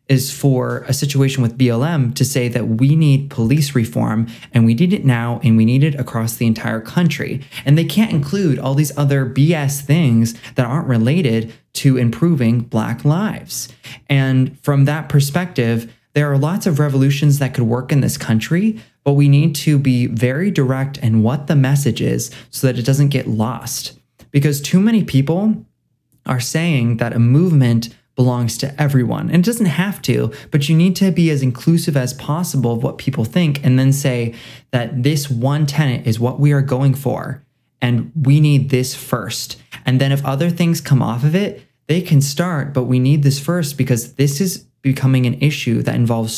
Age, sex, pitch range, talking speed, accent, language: 20-39, male, 125-150 Hz, 190 wpm, American, English